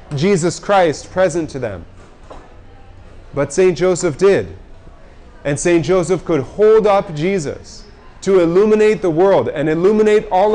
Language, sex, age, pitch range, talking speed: English, male, 30-49, 145-190 Hz, 130 wpm